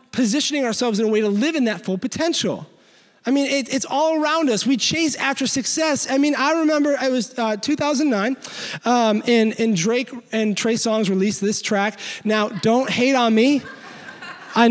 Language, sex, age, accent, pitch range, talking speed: English, male, 20-39, American, 235-325 Hz, 190 wpm